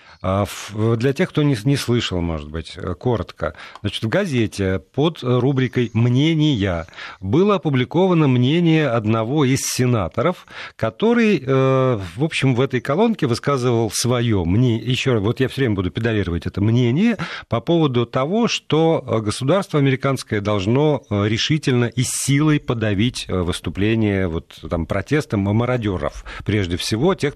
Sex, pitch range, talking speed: male, 105-145 Hz, 125 wpm